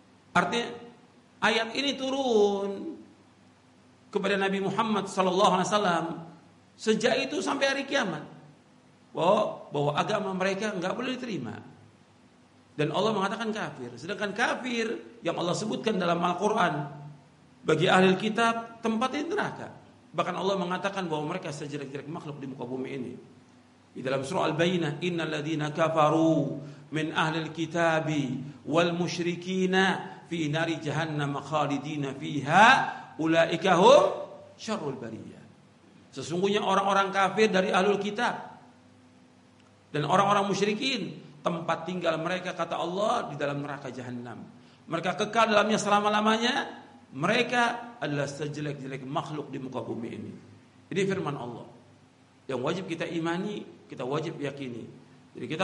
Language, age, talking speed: Indonesian, 50-69, 110 wpm